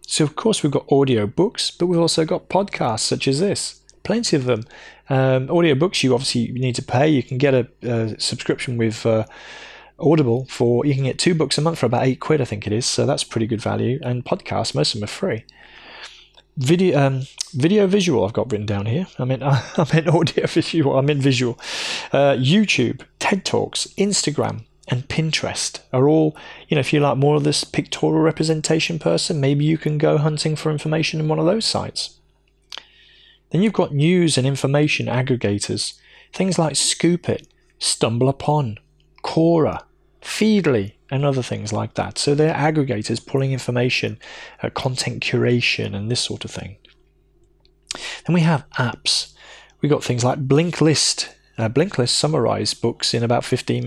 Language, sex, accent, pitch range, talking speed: English, male, British, 120-160 Hz, 180 wpm